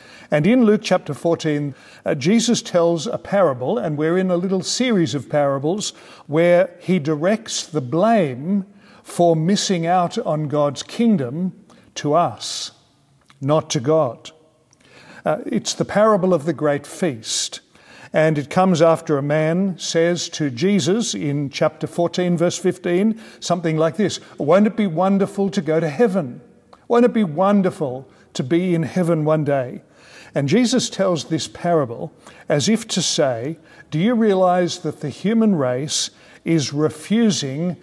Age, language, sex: 50-69, English, male